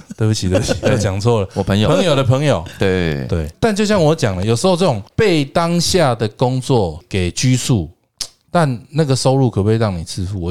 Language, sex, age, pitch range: Chinese, male, 20-39, 95-135 Hz